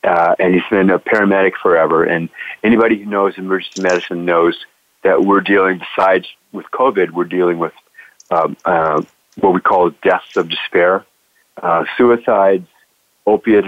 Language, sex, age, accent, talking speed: English, male, 50-69, American, 150 wpm